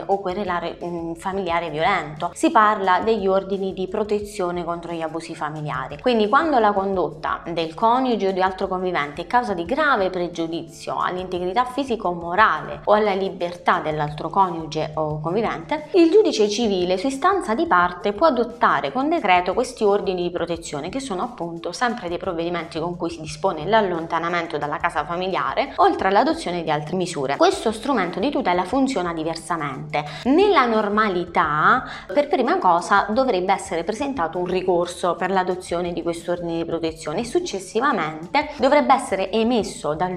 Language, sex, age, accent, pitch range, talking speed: Italian, female, 20-39, native, 170-225 Hz, 150 wpm